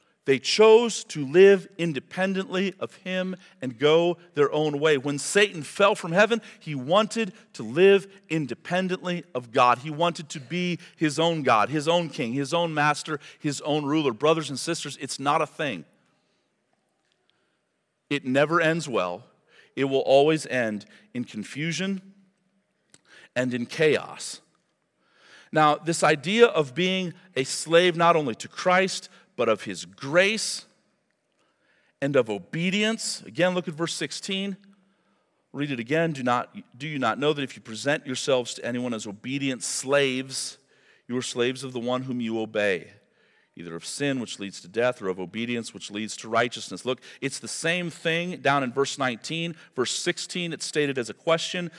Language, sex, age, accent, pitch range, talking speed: English, male, 40-59, American, 130-180 Hz, 165 wpm